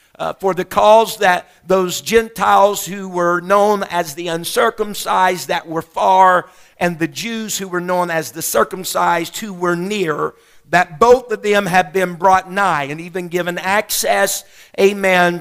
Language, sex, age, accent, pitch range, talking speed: English, male, 50-69, American, 185-245 Hz, 160 wpm